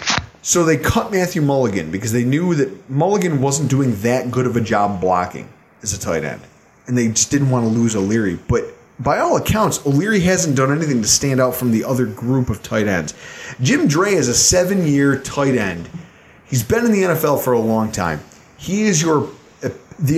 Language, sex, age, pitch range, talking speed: English, male, 30-49, 120-160 Hz, 200 wpm